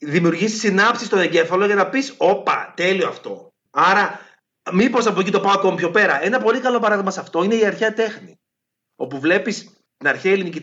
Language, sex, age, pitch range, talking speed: Greek, male, 30-49, 155-220 Hz, 190 wpm